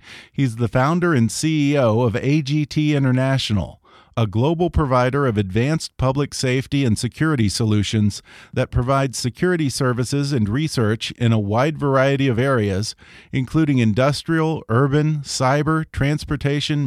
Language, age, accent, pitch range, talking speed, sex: English, 40-59, American, 115-150 Hz, 125 wpm, male